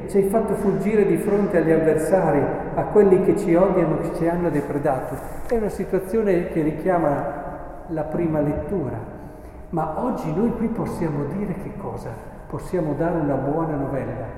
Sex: male